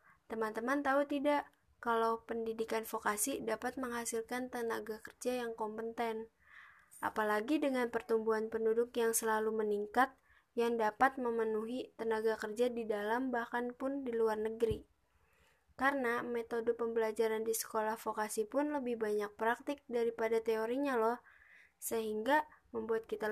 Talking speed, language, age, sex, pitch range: 120 wpm, Indonesian, 20-39, female, 220-240 Hz